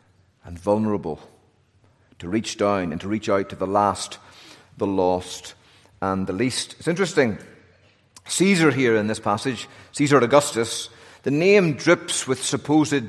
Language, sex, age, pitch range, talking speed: English, male, 40-59, 115-155 Hz, 140 wpm